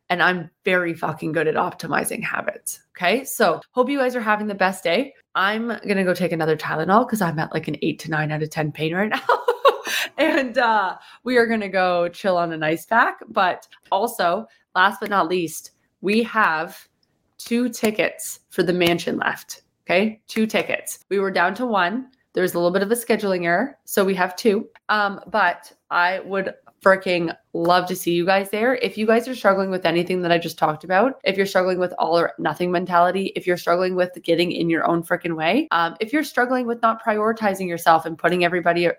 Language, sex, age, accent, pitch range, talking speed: English, female, 20-39, American, 170-215 Hz, 210 wpm